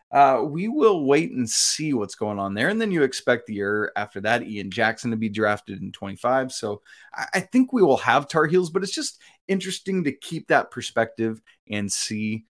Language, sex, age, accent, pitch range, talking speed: English, male, 30-49, American, 110-155 Hz, 205 wpm